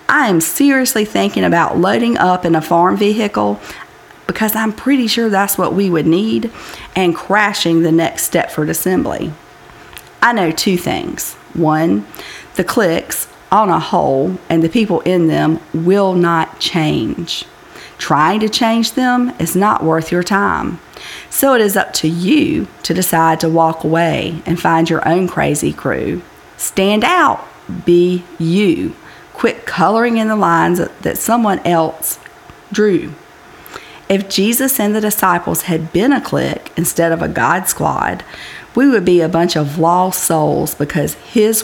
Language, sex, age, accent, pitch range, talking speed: English, female, 40-59, American, 160-205 Hz, 155 wpm